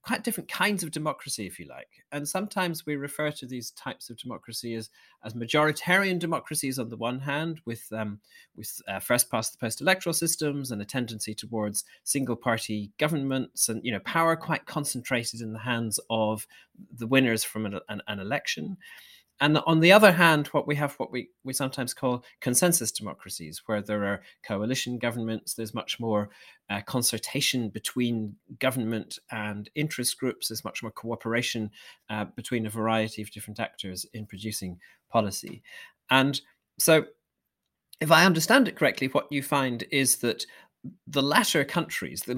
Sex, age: male, 30-49